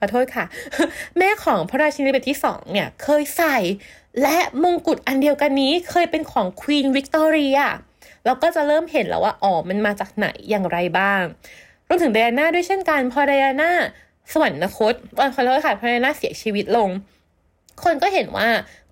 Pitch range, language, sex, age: 210-300 Hz, Thai, female, 20-39